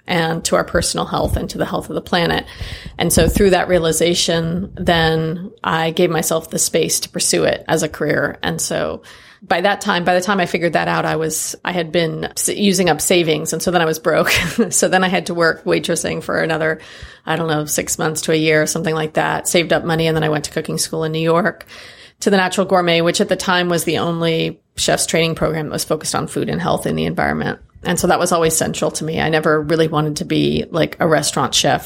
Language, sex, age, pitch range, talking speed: English, female, 30-49, 160-185 Hz, 245 wpm